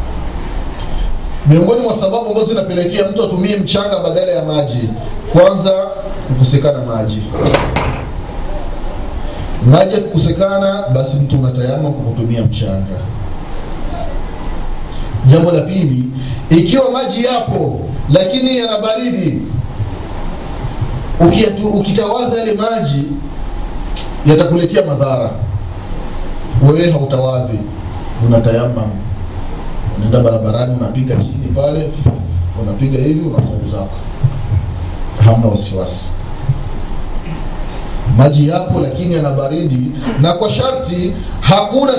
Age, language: 40-59, Swahili